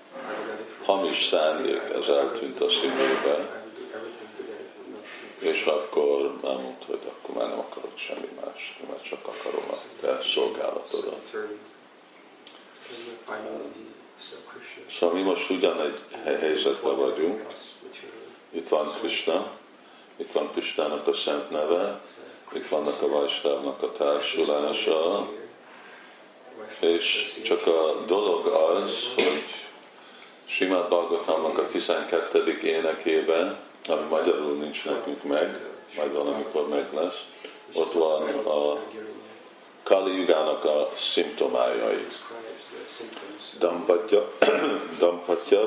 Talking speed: 95 wpm